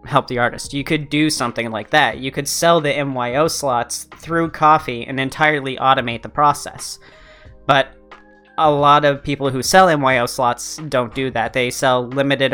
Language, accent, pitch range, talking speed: English, American, 120-140 Hz, 175 wpm